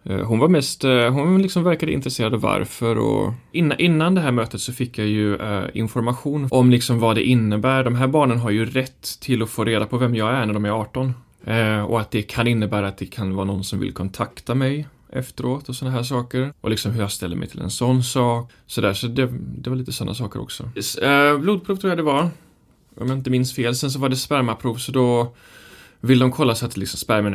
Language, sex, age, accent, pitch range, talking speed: English, male, 20-39, Swedish, 110-140 Hz, 240 wpm